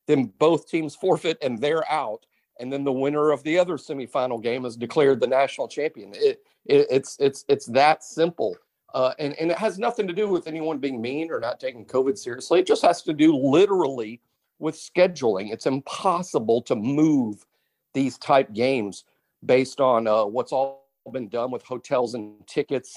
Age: 50-69